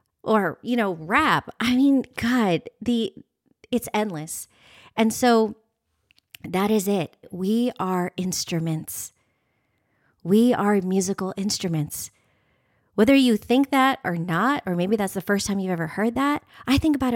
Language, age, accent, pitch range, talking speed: English, 30-49, American, 170-220 Hz, 145 wpm